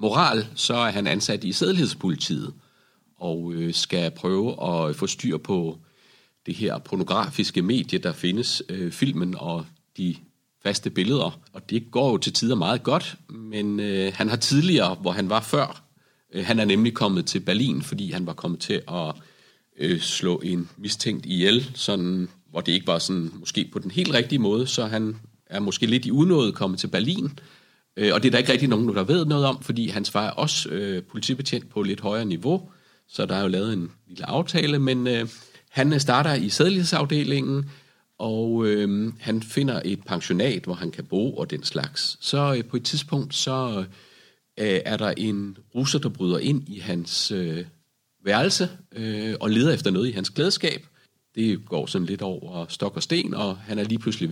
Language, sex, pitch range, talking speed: Danish, male, 95-135 Hz, 190 wpm